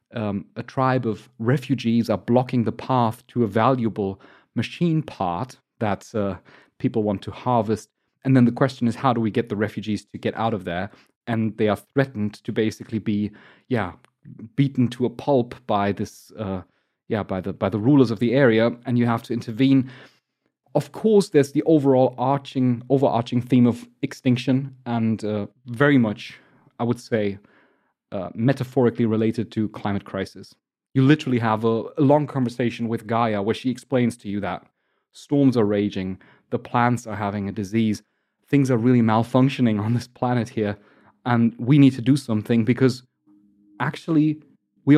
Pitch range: 110-135 Hz